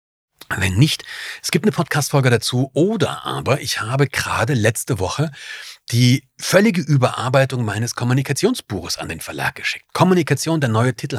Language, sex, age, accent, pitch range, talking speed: German, male, 40-59, German, 110-150 Hz, 145 wpm